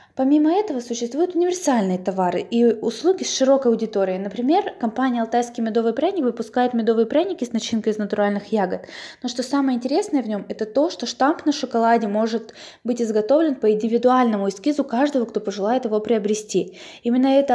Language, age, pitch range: Russian, 20-39, 215-265 Hz